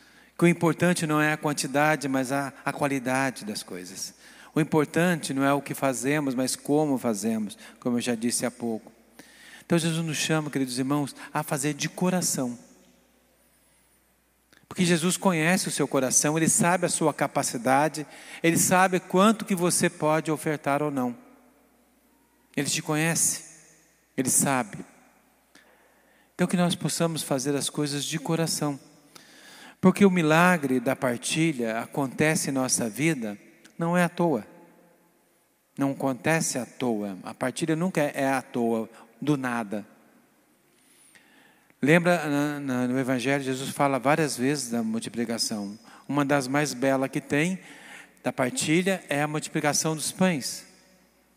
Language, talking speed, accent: Portuguese, 140 wpm, Brazilian